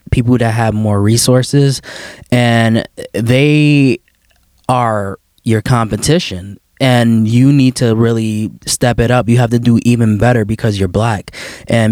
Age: 20-39